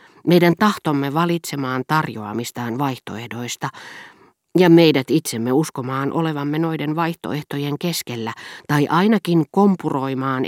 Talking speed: 90 wpm